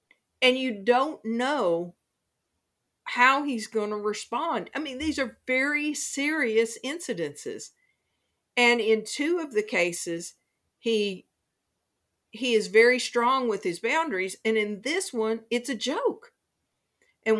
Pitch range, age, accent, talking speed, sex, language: 205-260 Hz, 50-69, American, 130 wpm, female, English